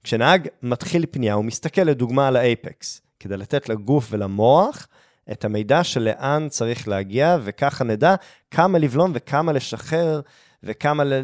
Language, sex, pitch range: Hebrew, male, 115-160 Hz